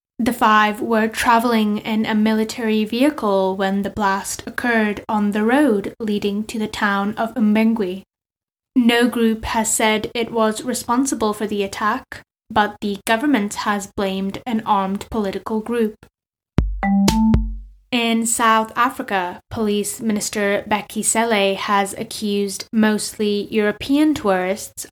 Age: 10-29